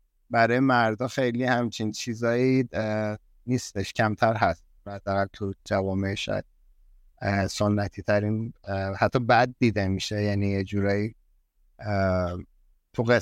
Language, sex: Persian, male